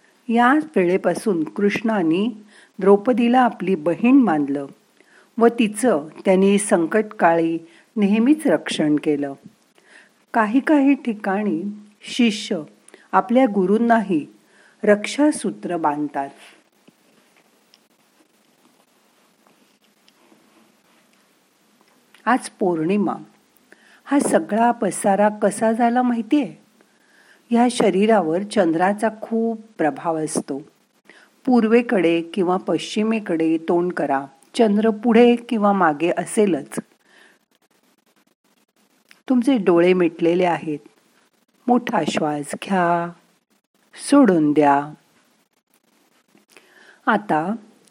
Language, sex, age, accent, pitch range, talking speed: Marathi, female, 50-69, native, 170-235 Hz, 70 wpm